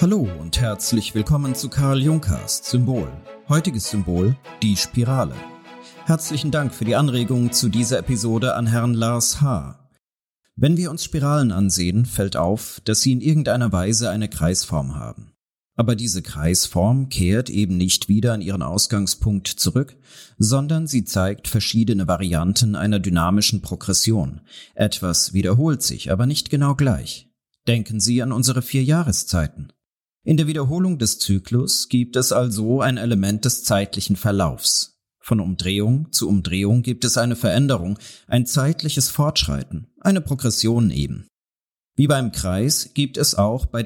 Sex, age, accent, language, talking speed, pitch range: male, 40-59, German, German, 145 wpm, 100-130 Hz